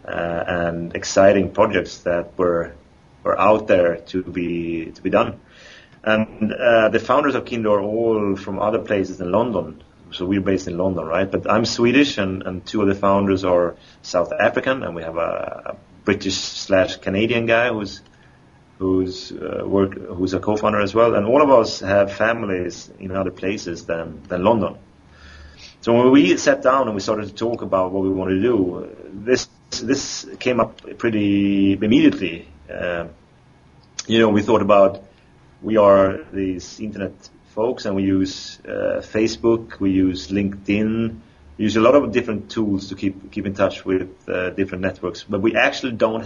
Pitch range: 90-110 Hz